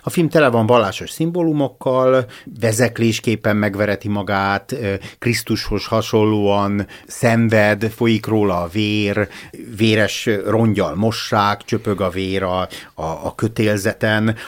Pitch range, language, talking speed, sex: 100-135 Hz, Hungarian, 105 wpm, male